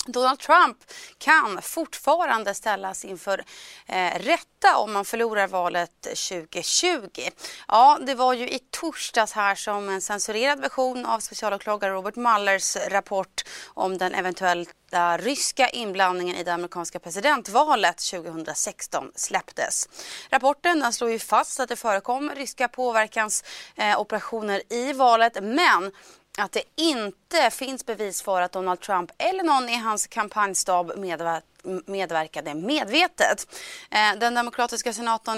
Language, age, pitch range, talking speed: Swedish, 30-49, 195-255 Hz, 125 wpm